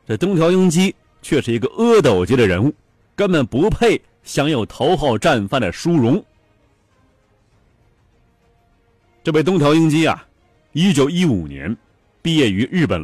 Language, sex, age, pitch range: Chinese, male, 30-49, 105-160 Hz